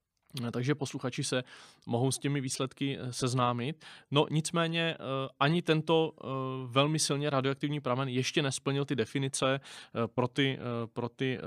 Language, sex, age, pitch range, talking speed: Czech, male, 20-39, 125-150 Hz, 120 wpm